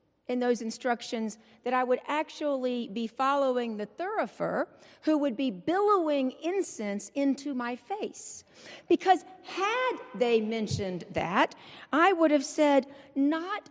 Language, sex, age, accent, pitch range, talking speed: English, female, 40-59, American, 195-290 Hz, 125 wpm